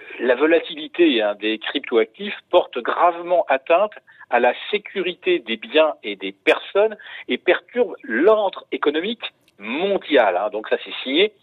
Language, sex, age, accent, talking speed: French, male, 50-69, French, 135 wpm